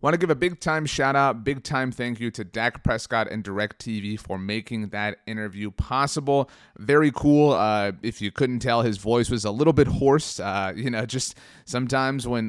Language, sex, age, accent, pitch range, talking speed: English, male, 30-49, American, 105-125 Hz, 185 wpm